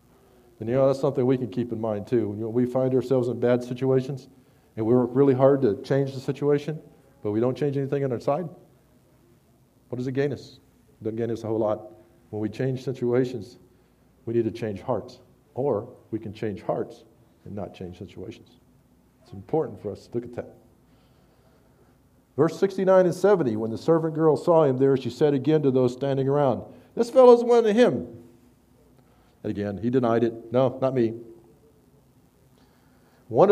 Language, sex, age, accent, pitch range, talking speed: English, male, 50-69, American, 115-145 Hz, 190 wpm